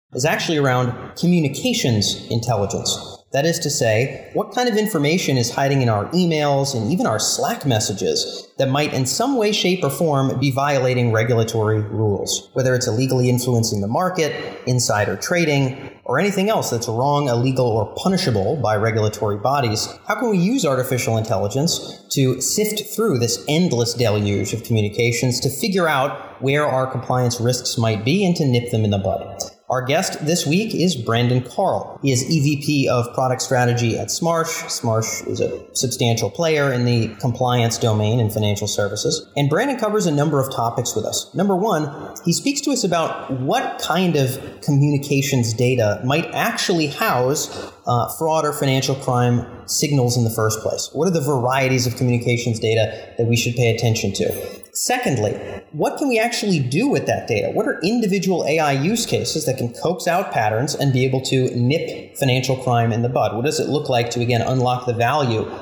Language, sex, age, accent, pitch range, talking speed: English, male, 30-49, American, 115-155 Hz, 180 wpm